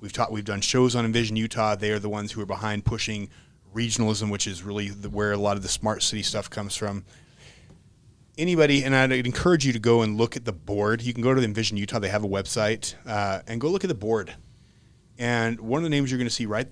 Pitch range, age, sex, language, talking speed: 105-125 Hz, 30-49, male, English, 255 wpm